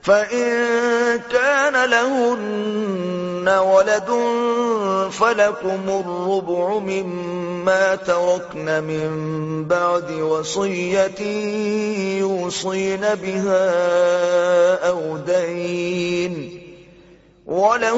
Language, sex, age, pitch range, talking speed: Urdu, male, 30-49, 180-230 Hz, 55 wpm